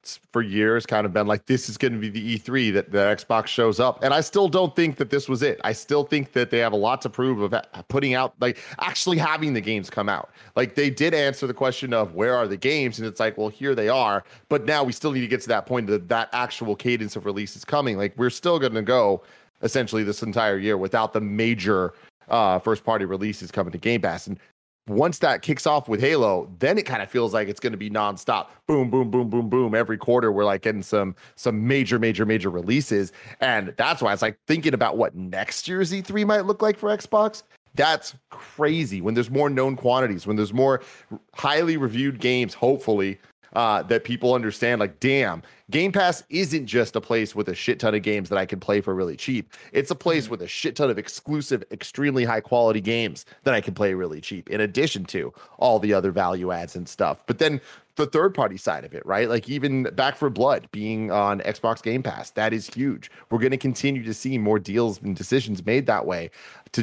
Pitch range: 105-135 Hz